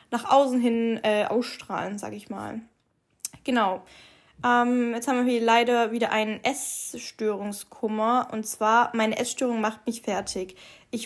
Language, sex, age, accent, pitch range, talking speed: German, female, 10-29, German, 215-245 Hz, 140 wpm